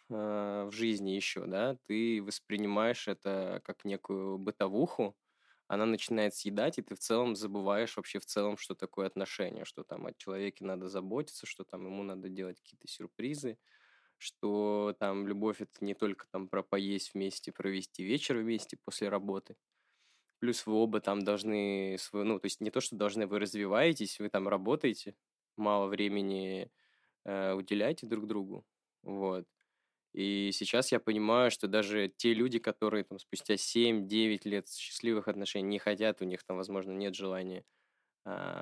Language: Russian